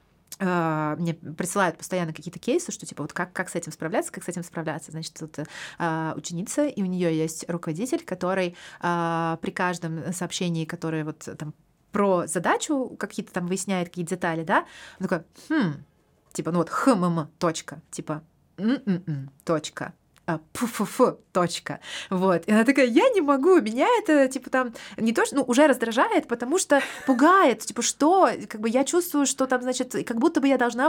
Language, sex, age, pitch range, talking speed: Russian, female, 30-49, 170-255 Hz, 170 wpm